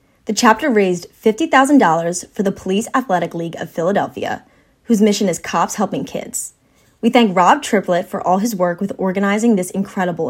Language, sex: English, female